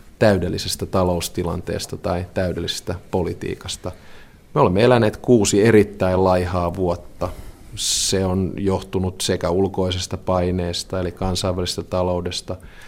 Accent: native